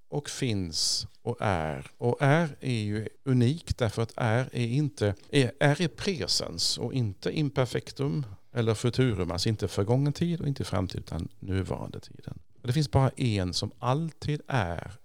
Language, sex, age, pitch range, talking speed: Swedish, male, 50-69, 95-130 Hz, 150 wpm